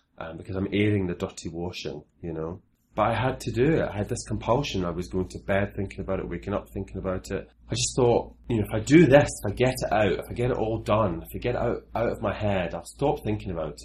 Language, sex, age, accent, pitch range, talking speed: English, male, 30-49, British, 80-105 Hz, 280 wpm